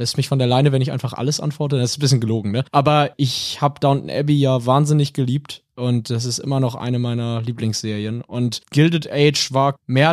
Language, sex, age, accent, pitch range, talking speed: German, male, 20-39, German, 130-160 Hz, 220 wpm